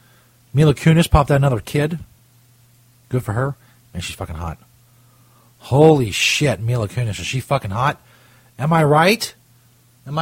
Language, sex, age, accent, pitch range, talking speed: English, male, 40-59, American, 115-140 Hz, 145 wpm